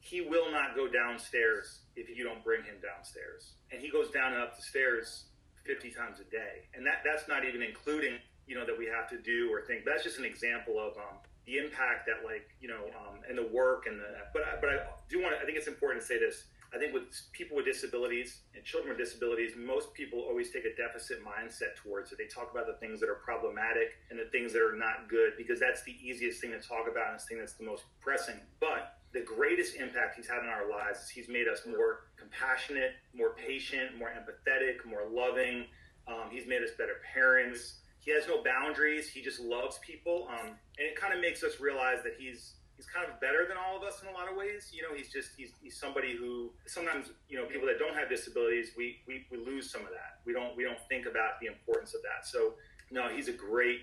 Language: English